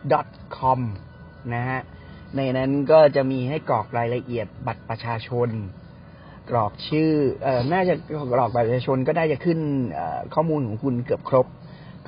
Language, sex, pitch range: Thai, male, 120-155 Hz